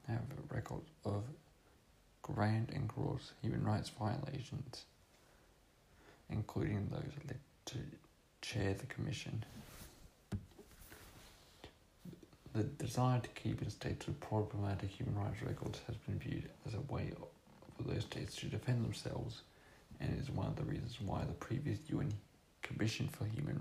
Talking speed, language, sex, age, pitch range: 130 wpm, English, male, 40-59, 105-140 Hz